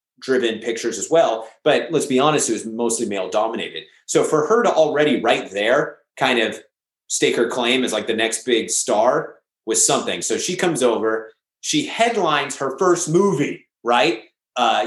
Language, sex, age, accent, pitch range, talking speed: English, male, 30-49, American, 120-170 Hz, 180 wpm